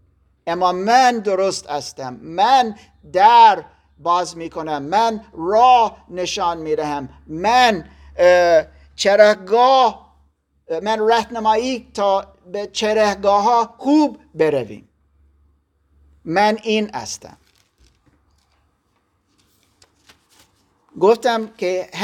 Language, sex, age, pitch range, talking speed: Persian, male, 50-69, 145-215 Hz, 80 wpm